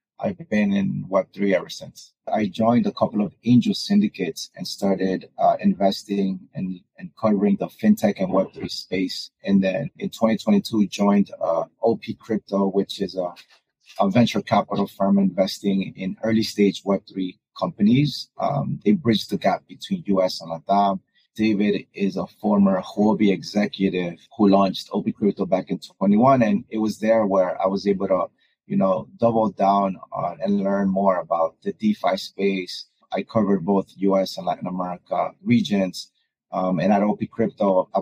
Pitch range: 95-120 Hz